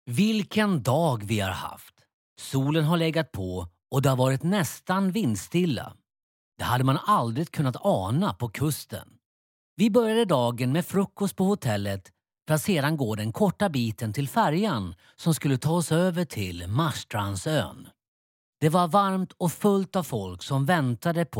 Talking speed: 145 wpm